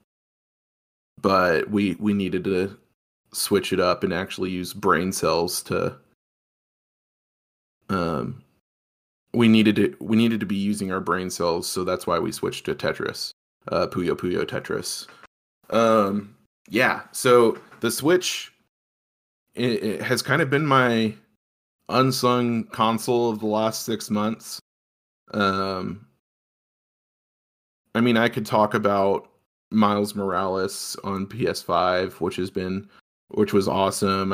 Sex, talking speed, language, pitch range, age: male, 130 wpm, English, 95-115 Hz, 20-39